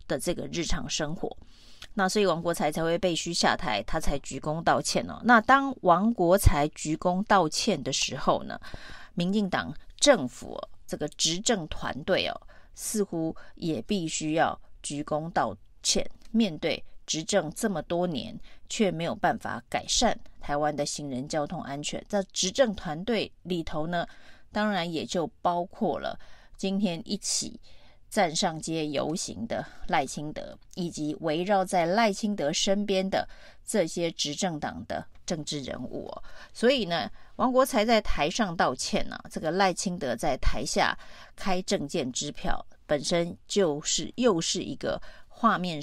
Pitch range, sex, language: 160-210 Hz, female, Chinese